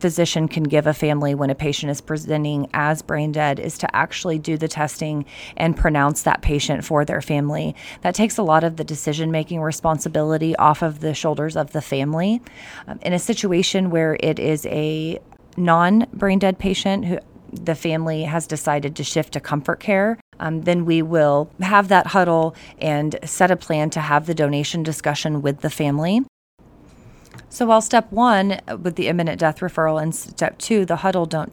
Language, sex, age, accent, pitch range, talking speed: English, female, 30-49, American, 150-175 Hz, 185 wpm